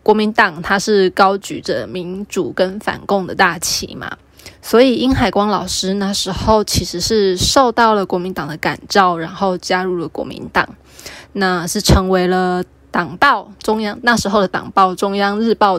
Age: 20-39